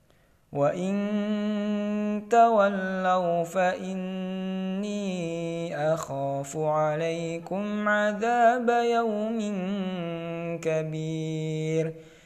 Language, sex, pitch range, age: Indonesian, male, 165-210 Hz, 20-39